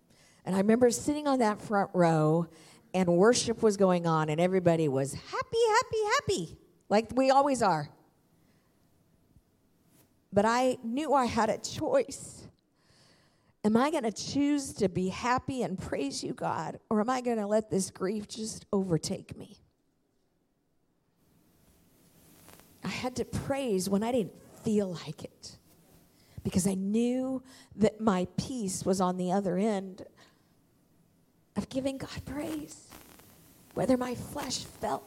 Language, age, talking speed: English, 50-69, 140 wpm